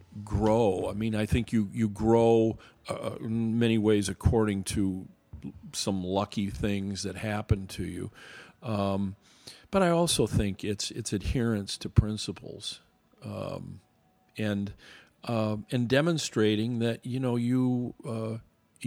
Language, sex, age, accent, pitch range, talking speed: English, male, 50-69, American, 100-115 Hz, 135 wpm